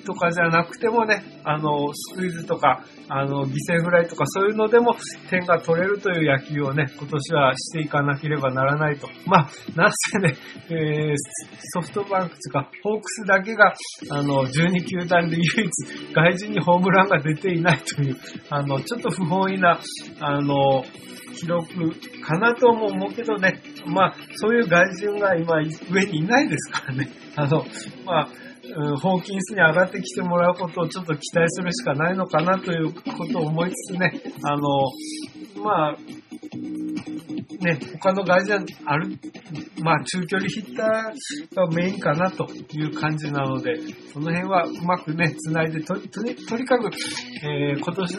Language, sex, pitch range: Japanese, male, 155-190 Hz